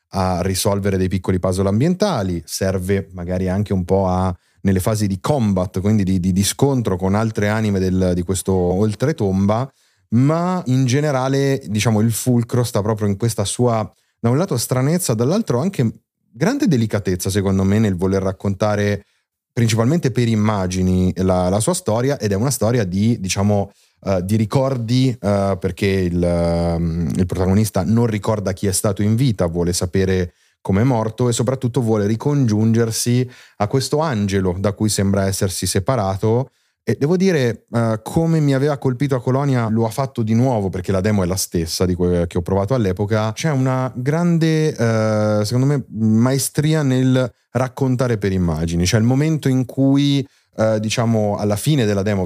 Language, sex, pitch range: Italian, male, 95-130 Hz